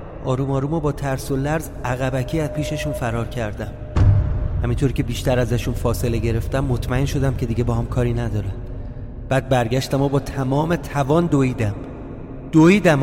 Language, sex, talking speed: Persian, male, 155 wpm